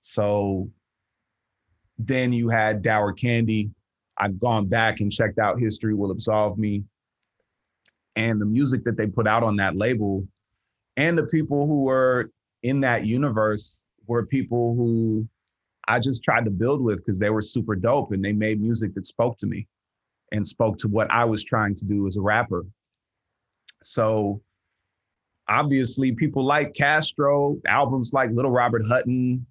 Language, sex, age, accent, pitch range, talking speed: English, male, 30-49, American, 105-120 Hz, 160 wpm